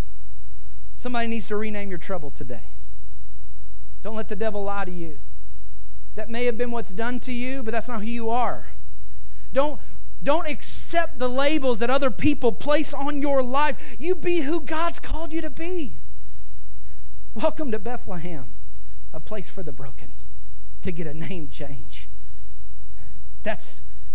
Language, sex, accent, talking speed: English, male, American, 155 wpm